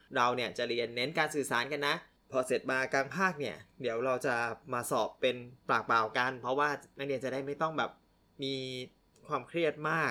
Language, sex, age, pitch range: Thai, male, 20-39, 130-185 Hz